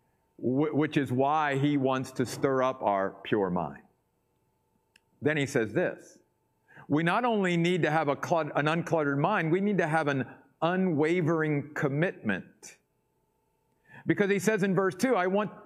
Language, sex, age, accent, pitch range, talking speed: English, male, 50-69, American, 145-195 Hz, 150 wpm